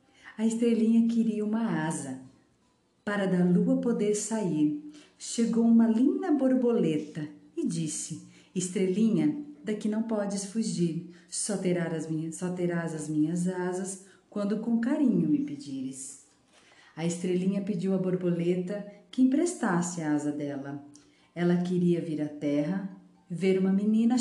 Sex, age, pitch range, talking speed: female, 50-69, 165-230 Hz, 120 wpm